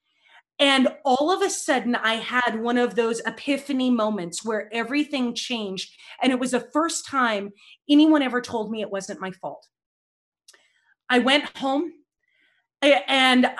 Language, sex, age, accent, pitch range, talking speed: English, female, 30-49, American, 220-265 Hz, 145 wpm